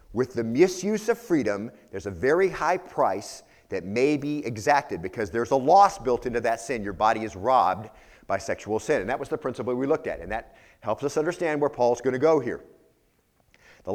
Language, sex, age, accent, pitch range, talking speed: English, male, 40-59, American, 115-155 Hz, 210 wpm